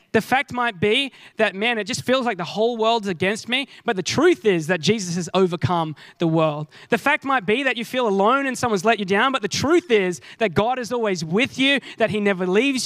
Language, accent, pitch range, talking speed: English, Australian, 185-260 Hz, 245 wpm